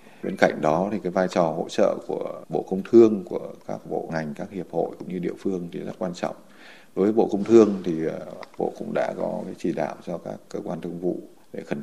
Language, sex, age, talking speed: Vietnamese, male, 20-39, 250 wpm